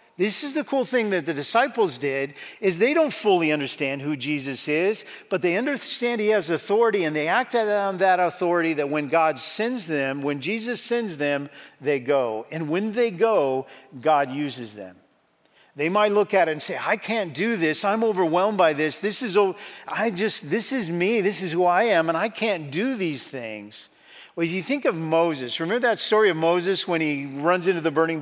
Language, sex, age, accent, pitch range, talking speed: English, male, 50-69, American, 155-205 Hz, 205 wpm